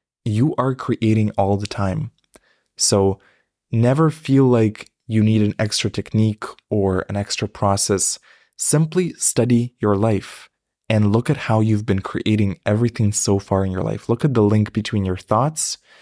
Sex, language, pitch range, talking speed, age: male, English, 100-115 Hz, 160 wpm, 20-39